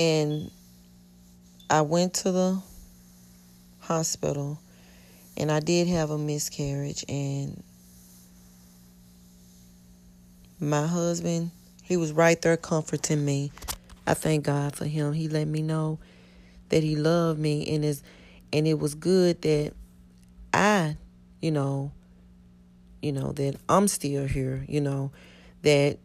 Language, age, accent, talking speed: English, 30-49, American, 115 wpm